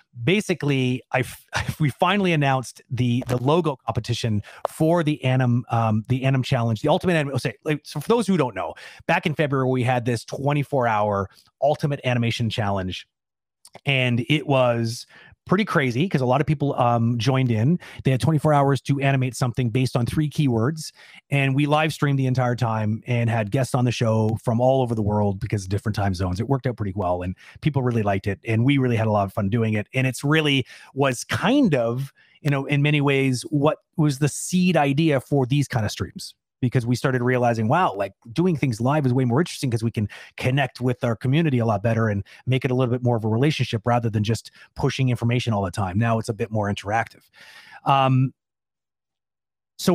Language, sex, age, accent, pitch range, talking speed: English, male, 30-49, American, 115-145 Hz, 210 wpm